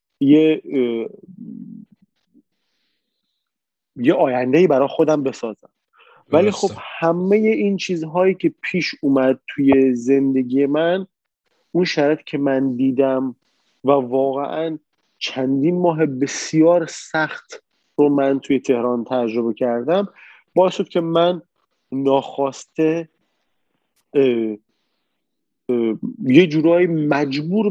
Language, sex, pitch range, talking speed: Persian, male, 135-175 Hz, 85 wpm